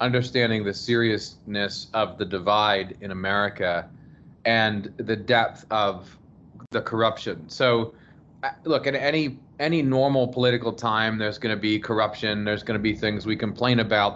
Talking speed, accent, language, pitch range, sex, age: 150 wpm, American, English, 105-130 Hz, male, 30-49